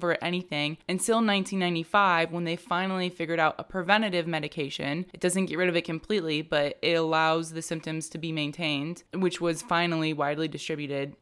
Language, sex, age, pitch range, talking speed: English, female, 20-39, 165-210 Hz, 165 wpm